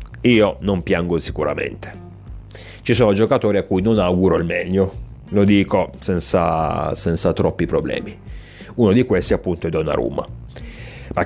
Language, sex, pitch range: Italian, male, 85-105 Hz